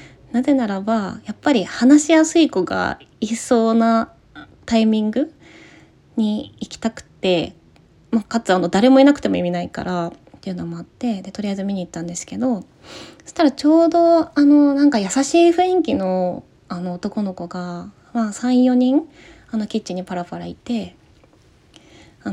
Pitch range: 180-265 Hz